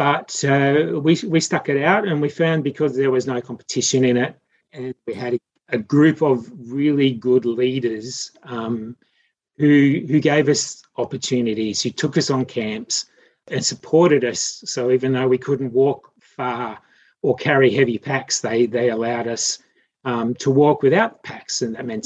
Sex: male